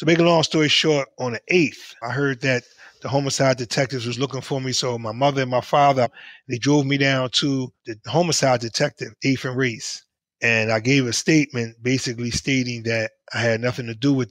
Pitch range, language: 125-145 Hz, English